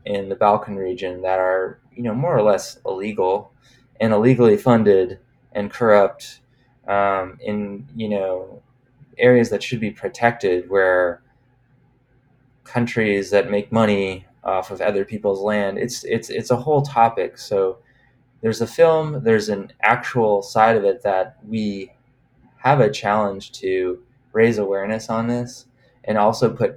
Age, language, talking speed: 20-39, English, 145 wpm